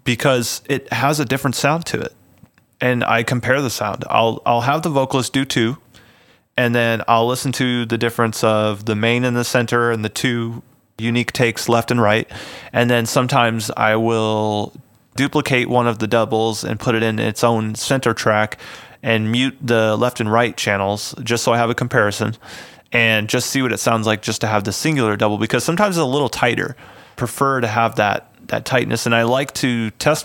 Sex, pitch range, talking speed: male, 110-125 Hz, 205 wpm